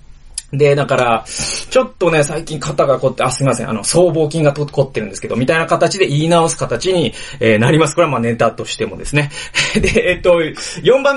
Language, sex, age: Japanese, male, 30-49